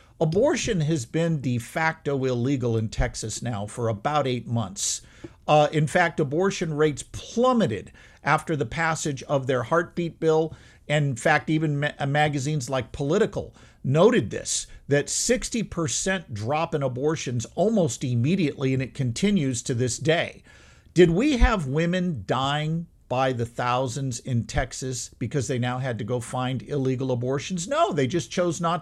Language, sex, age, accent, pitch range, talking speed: English, male, 50-69, American, 130-185 Hz, 150 wpm